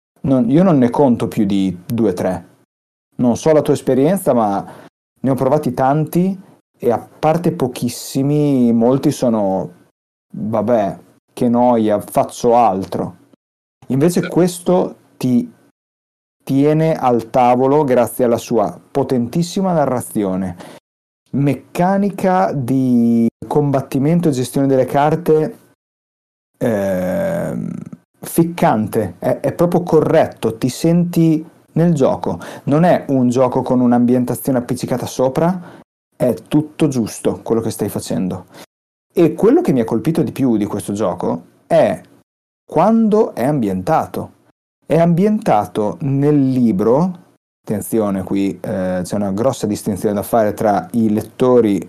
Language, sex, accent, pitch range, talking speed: Italian, male, native, 110-155 Hz, 120 wpm